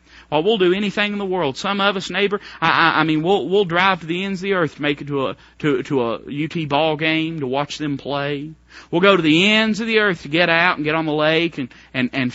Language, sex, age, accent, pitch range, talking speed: English, male, 40-59, American, 140-210 Hz, 280 wpm